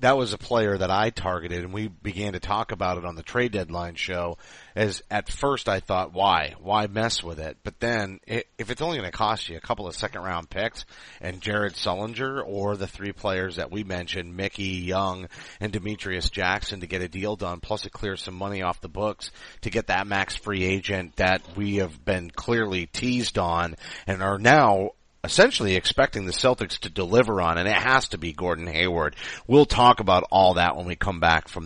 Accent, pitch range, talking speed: American, 90-110 Hz, 210 wpm